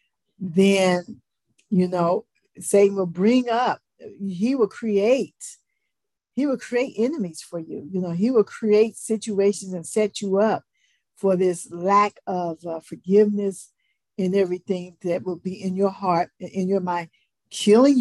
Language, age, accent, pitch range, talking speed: English, 50-69, American, 180-205 Hz, 145 wpm